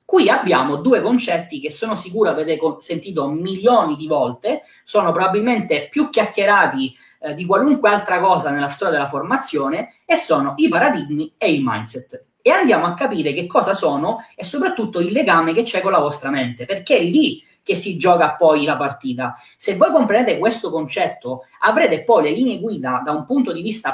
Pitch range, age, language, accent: 150-225 Hz, 20-39, Italian, native